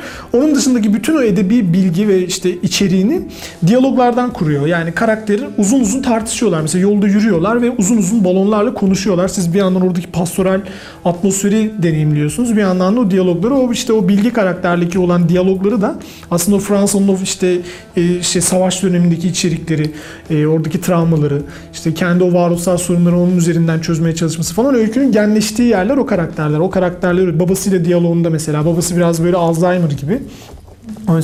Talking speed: 160 wpm